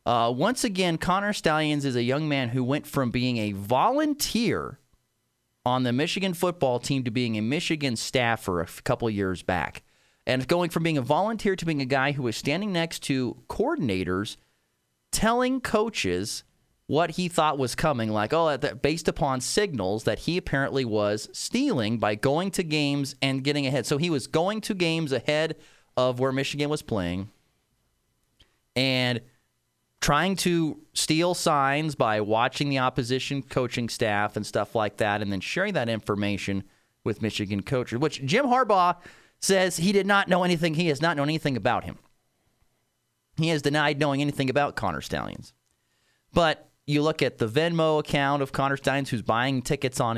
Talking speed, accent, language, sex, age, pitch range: 170 wpm, American, English, male, 30-49, 115-155 Hz